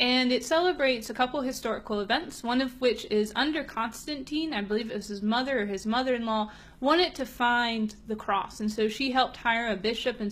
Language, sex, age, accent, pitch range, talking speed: English, female, 30-49, American, 215-255 Hz, 205 wpm